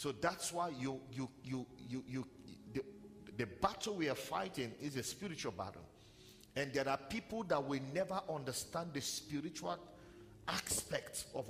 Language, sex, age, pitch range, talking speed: English, male, 50-69, 105-160 Hz, 160 wpm